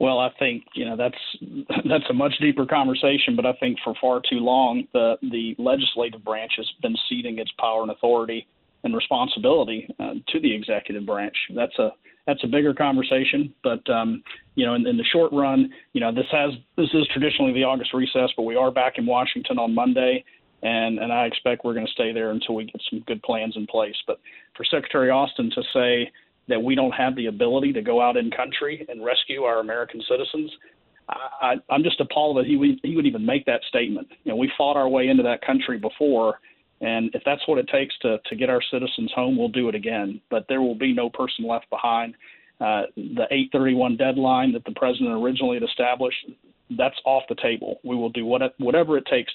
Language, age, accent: English, 40-59, American